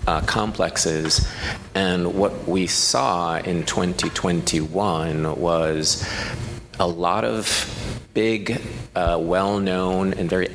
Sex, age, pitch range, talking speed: male, 30-49, 85-100 Hz, 100 wpm